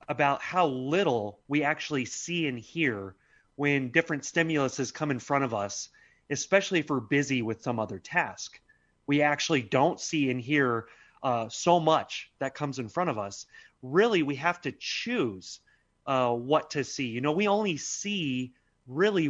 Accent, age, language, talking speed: American, 30-49, English, 170 wpm